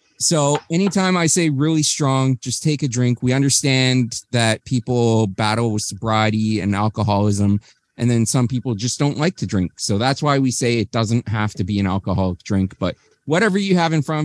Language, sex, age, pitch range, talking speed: English, male, 30-49, 110-145 Hz, 200 wpm